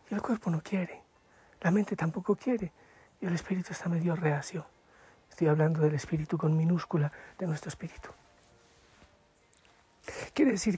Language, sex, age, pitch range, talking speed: Spanish, male, 60-79, 175-220 Hz, 145 wpm